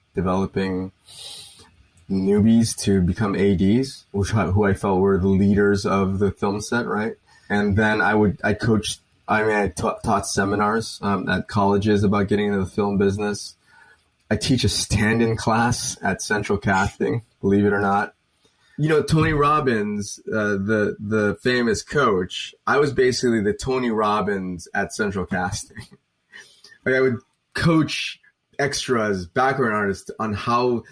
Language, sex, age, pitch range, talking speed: English, male, 20-39, 100-130 Hz, 150 wpm